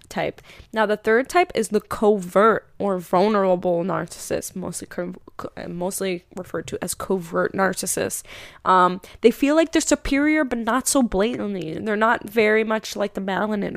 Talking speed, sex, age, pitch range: 155 wpm, female, 10-29, 190-235 Hz